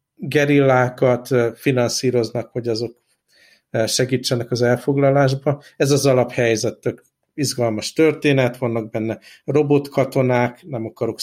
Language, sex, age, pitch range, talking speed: Hungarian, male, 60-79, 115-140 Hz, 95 wpm